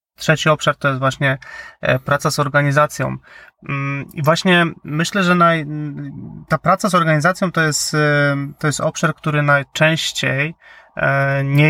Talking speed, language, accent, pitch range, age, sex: 130 wpm, Polish, native, 135-155 Hz, 30-49, male